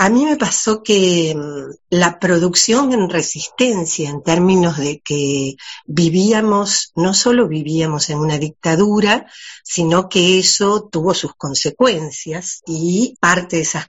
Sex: female